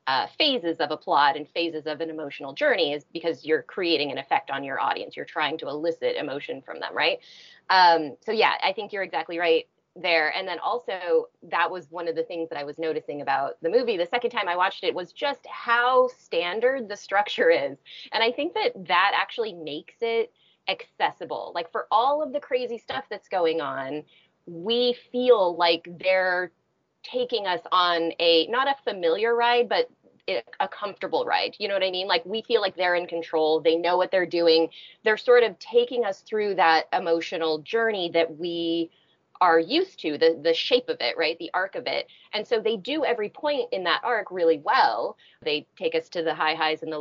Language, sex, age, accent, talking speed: English, female, 30-49, American, 205 wpm